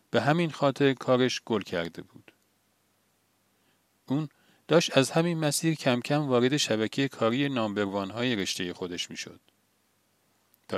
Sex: male